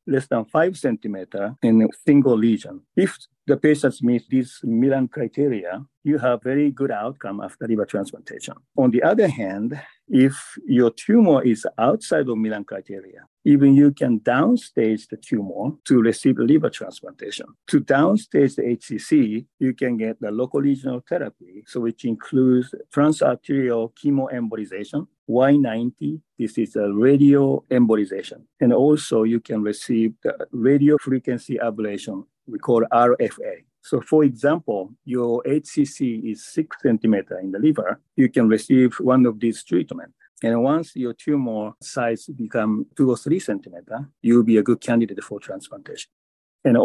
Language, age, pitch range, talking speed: English, 50-69, 115-140 Hz, 145 wpm